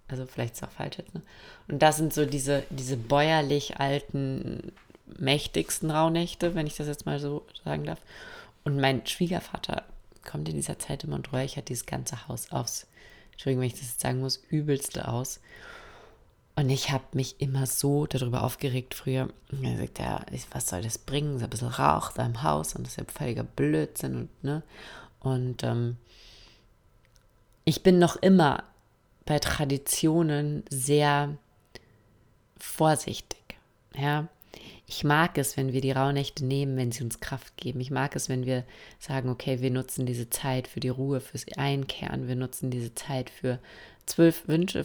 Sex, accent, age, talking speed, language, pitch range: female, German, 30-49, 165 wpm, German, 120-145 Hz